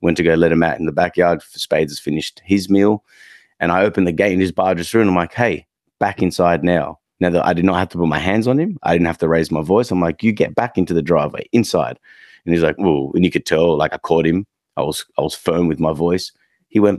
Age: 30-49